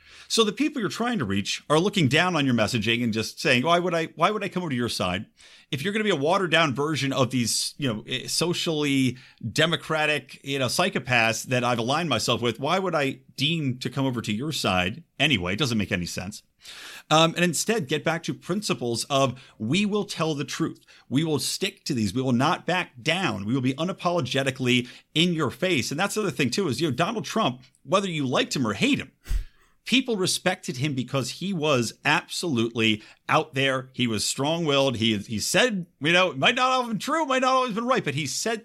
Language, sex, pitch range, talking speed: English, male, 120-175 Hz, 225 wpm